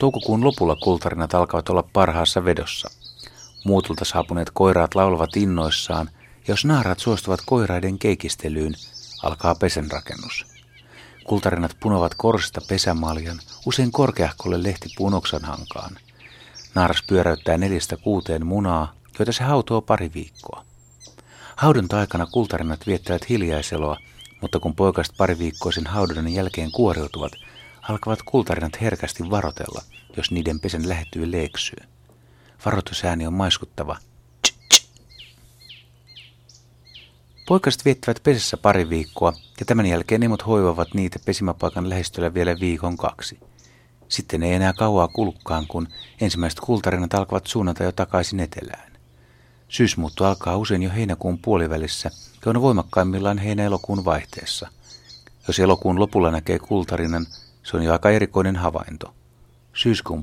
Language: Finnish